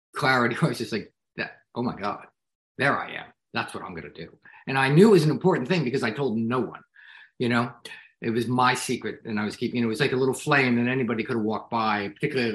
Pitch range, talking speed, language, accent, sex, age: 115-160 Hz, 260 wpm, English, American, male, 50-69